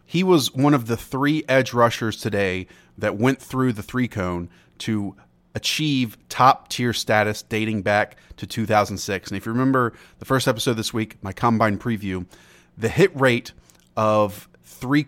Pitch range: 105-130 Hz